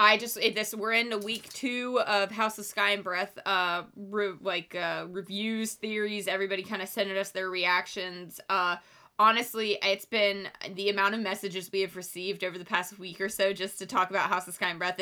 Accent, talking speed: American, 210 wpm